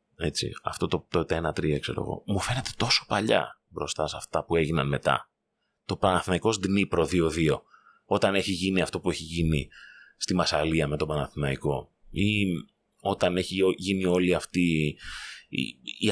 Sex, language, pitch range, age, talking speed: male, Greek, 80-100 Hz, 30-49, 155 wpm